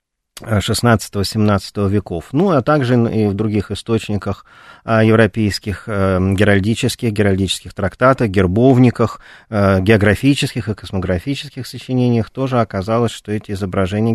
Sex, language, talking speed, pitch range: male, Russian, 100 wpm, 100-130 Hz